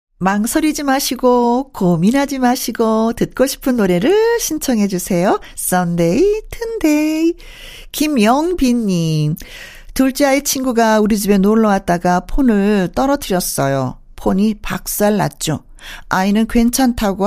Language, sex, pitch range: Korean, female, 180-235 Hz